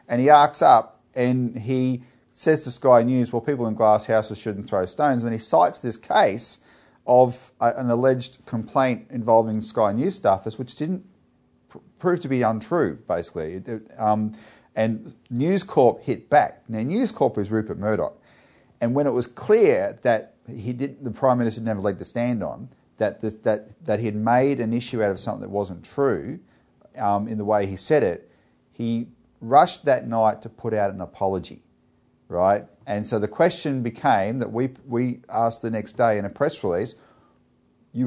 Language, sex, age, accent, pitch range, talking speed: English, male, 40-59, Australian, 110-140 Hz, 185 wpm